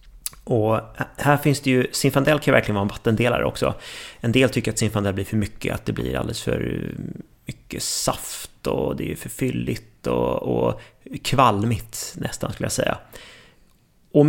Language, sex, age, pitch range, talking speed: Swedish, male, 30-49, 100-125 Hz, 170 wpm